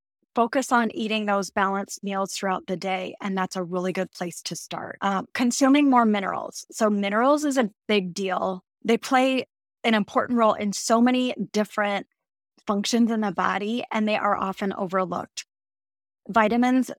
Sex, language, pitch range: female, English, 195-230 Hz